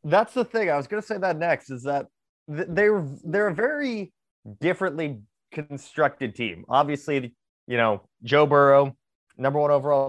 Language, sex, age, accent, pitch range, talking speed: English, male, 20-39, American, 130-185 Hz, 160 wpm